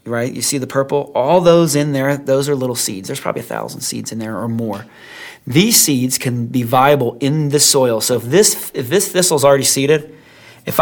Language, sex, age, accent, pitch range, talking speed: English, male, 30-49, American, 125-155 Hz, 215 wpm